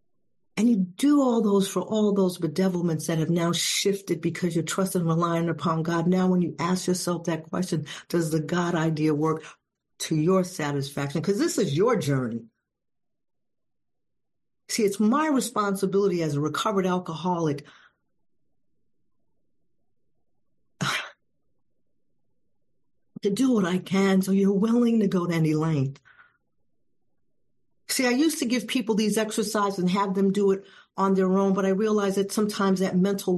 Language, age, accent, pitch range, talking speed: English, 50-69, American, 170-200 Hz, 150 wpm